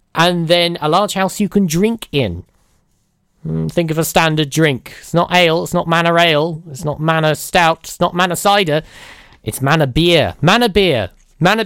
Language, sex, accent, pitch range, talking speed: English, male, British, 155-215 Hz, 180 wpm